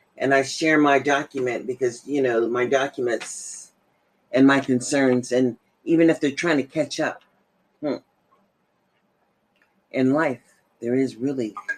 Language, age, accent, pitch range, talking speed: English, 40-59, American, 130-165 Hz, 140 wpm